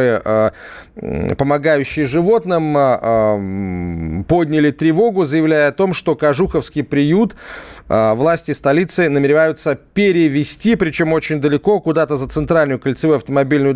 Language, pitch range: Russian, 135-170 Hz